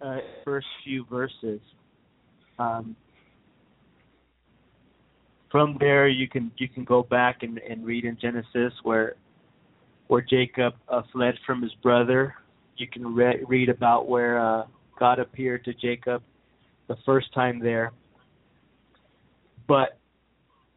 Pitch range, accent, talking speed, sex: 115-135 Hz, American, 120 wpm, male